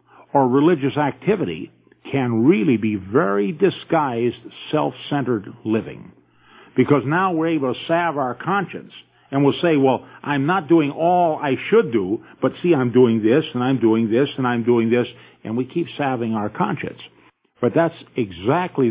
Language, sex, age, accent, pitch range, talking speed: English, male, 50-69, American, 115-145 Hz, 160 wpm